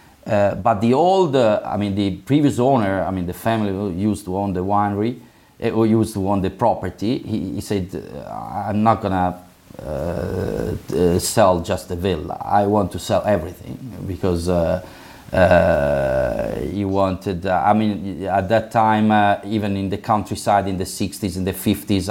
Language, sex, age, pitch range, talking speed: English, male, 30-49, 90-105 Hz, 175 wpm